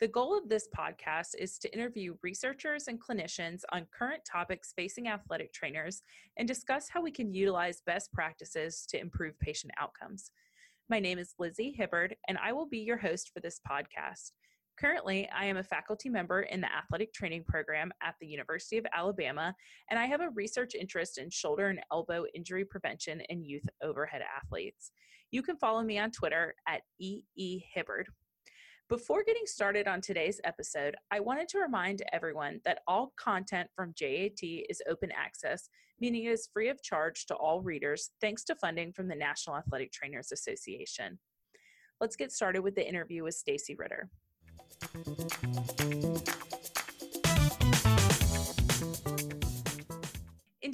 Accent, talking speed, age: American, 155 wpm, 20-39